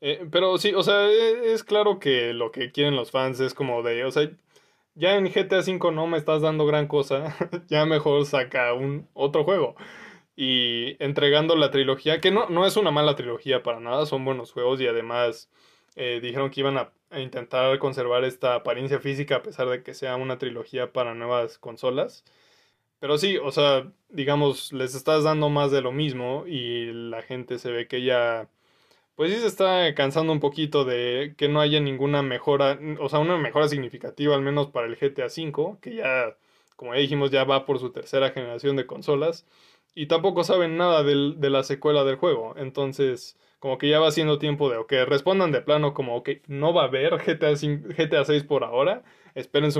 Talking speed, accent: 200 wpm, Mexican